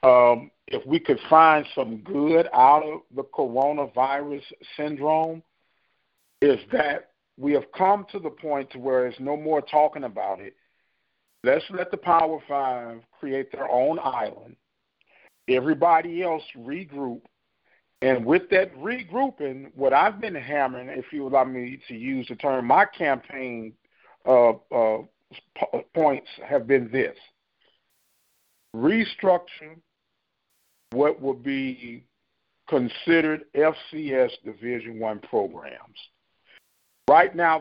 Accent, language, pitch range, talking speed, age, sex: American, English, 130-160 Hz, 120 wpm, 50-69, male